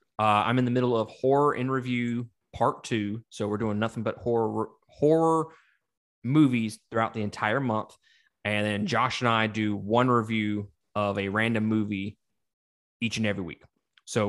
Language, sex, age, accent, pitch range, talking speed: English, male, 20-39, American, 105-125 Hz, 170 wpm